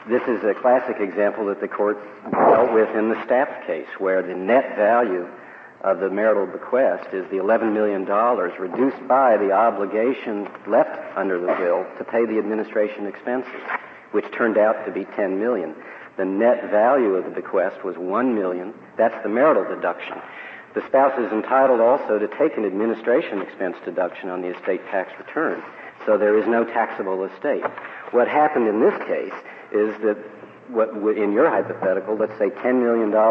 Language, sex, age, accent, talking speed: English, male, 60-79, American, 175 wpm